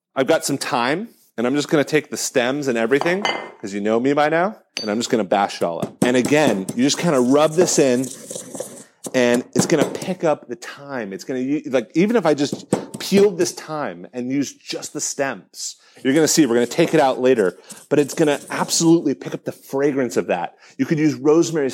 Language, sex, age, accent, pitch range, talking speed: English, male, 30-49, American, 120-160 Hz, 245 wpm